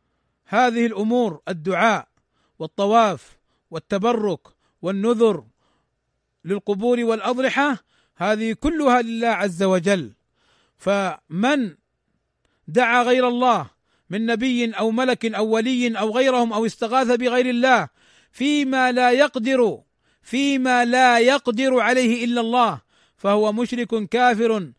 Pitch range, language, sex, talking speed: 195-240 Hz, Arabic, male, 100 wpm